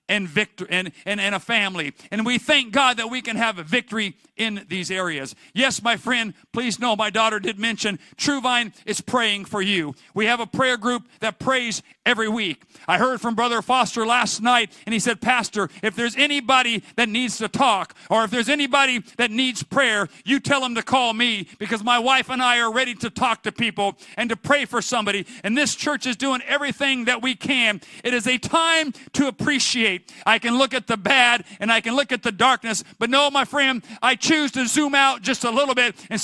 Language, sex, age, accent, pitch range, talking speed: English, male, 50-69, American, 210-265 Hz, 220 wpm